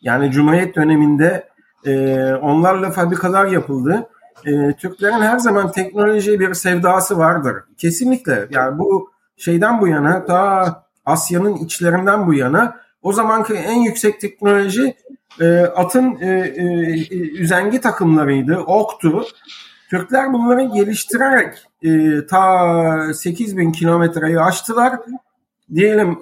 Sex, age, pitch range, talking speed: male, 50-69, 160-220 Hz, 110 wpm